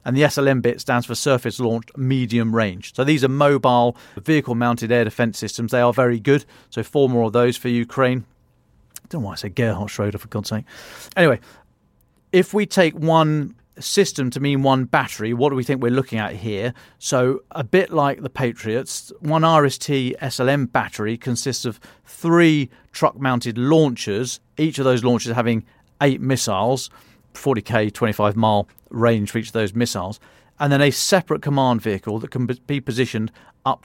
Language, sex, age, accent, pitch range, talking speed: English, male, 40-59, British, 115-140 Hz, 175 wpm